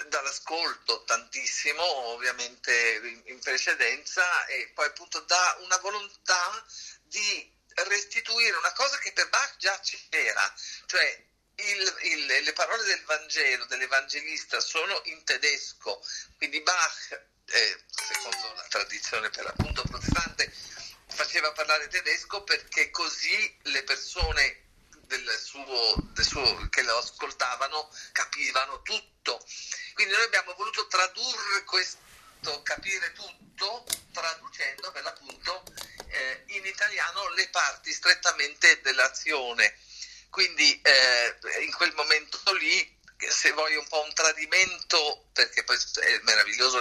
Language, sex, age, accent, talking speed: Italian, male, 50-69, native, 115 wpm